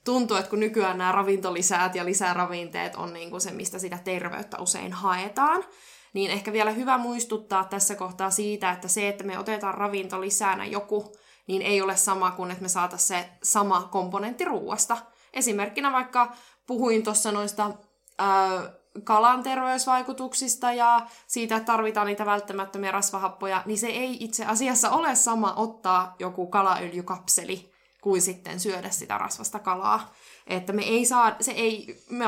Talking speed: 150 wpm